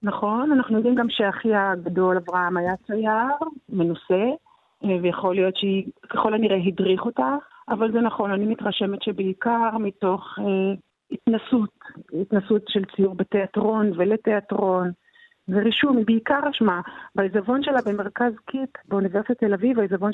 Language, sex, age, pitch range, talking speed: Hebrew, female, 50-69, 195-230 Hz, 130 wpm